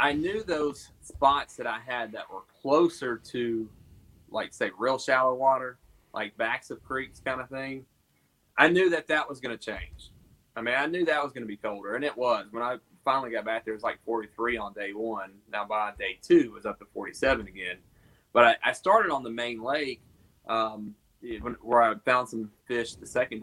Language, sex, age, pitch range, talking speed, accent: English, male, 30-49, 105-130 Hz, 215 wpm, American